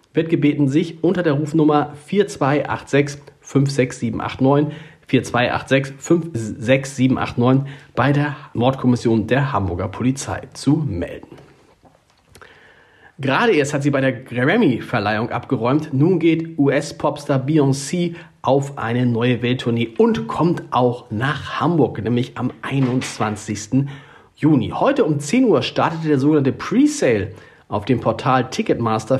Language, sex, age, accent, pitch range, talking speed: German, male, 40-59, German, 125-155 Hz, 115 wpm